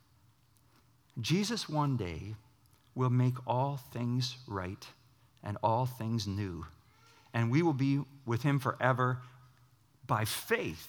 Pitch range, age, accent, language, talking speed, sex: 120-155 Hz, 50-69, American, English, 115 wpm, male